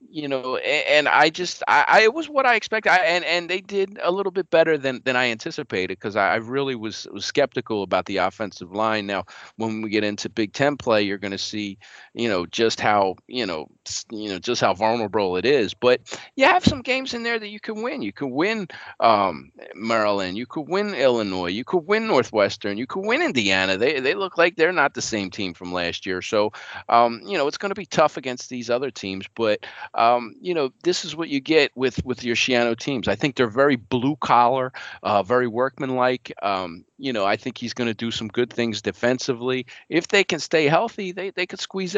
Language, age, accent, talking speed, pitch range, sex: English, 40-59, American, 225 wpm, 110-160 Hz, male